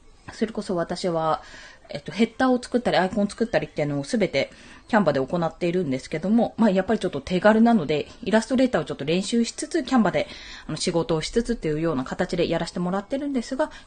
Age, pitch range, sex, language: 20-39, 180-270 Hz, female, Japanese